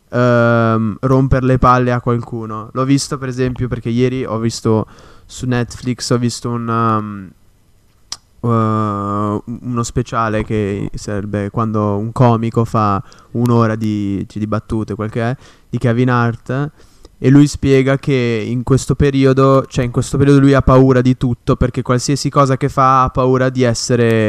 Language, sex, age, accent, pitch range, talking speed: Italian, male, 20-39, native, 115-130 Hz, 155 wpm